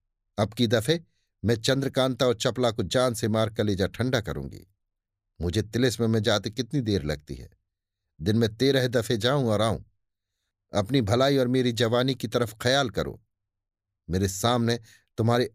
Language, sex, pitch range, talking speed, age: Hindi, male, 95-130 Hz, 160 wpm, 50-69